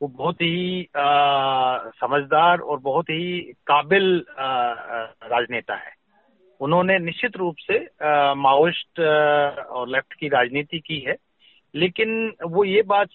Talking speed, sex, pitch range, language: 120 wpm, male, 145-180 Hz, Hindi